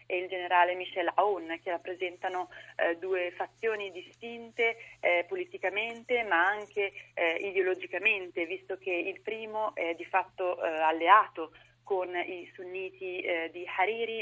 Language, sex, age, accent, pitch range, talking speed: Italian, female, 30-49, native, 175-210 Hz, 135 wpm